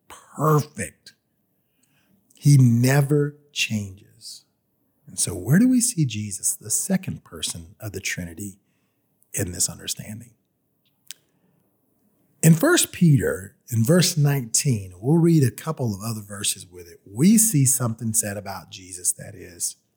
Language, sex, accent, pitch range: English, male, American, 105-155 Hz